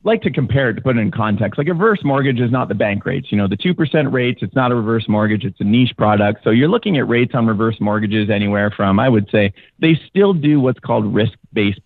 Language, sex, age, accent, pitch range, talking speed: English, male, 30-49, American, 110-150 Hz, 260 wpm